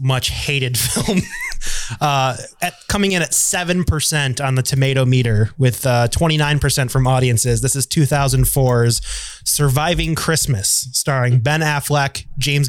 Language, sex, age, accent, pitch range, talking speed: English, male, 20-39, American, 130-155 Hz, 130 wpm